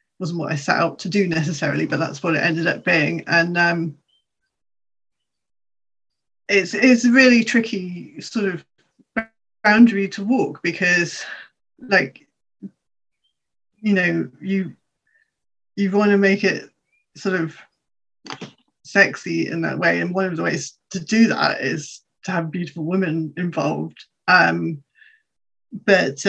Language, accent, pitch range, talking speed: English, British, 160-200 Hz, 130 wpm